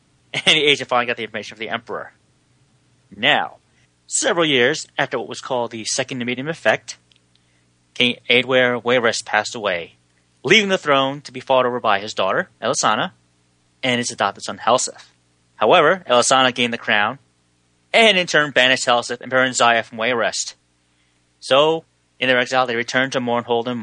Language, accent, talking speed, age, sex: English, American, 165 wpm, 30-49, male